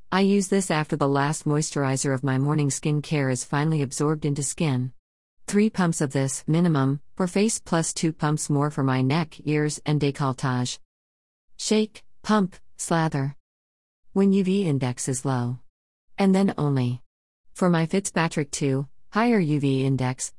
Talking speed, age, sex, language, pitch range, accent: 155 wpm, 40-59, female, English, 125-165 Hz, American